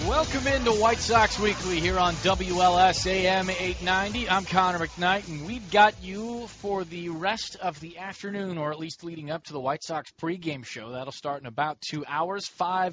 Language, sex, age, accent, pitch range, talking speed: English, male, 30-49, American, 145-185 Hz, 185 wpm